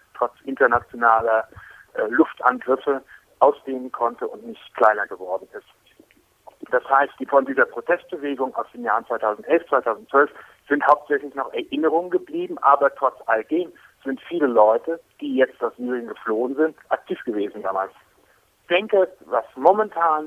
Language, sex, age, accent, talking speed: German, male, 60-79, German, 140 wpm